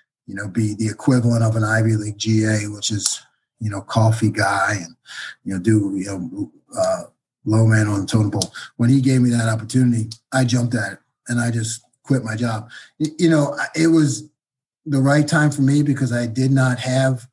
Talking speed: 205 wpm